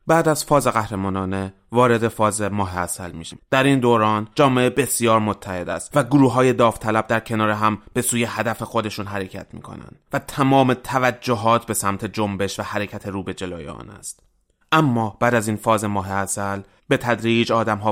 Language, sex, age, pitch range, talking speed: Persian, male, 20-39, 100-120 Hz, 175 wpm